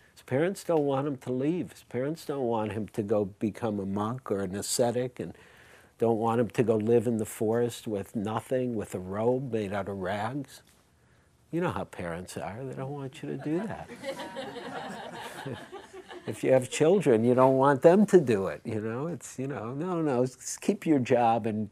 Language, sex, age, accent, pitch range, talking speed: English, male, 60-79, American, 110-145 Hz, 205 wpm